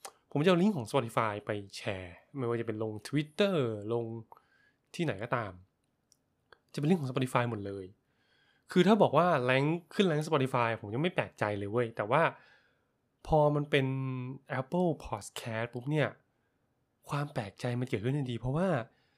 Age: 20-39